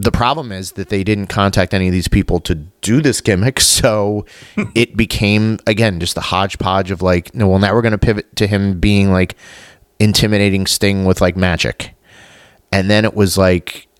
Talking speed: 195 wpm